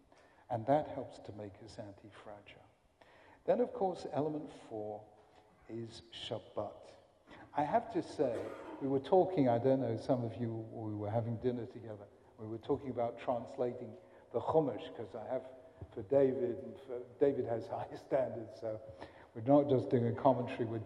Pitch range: 115-160 Hz